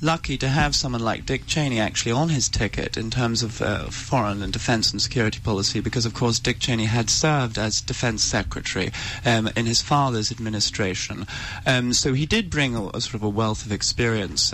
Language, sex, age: English, male, 30-49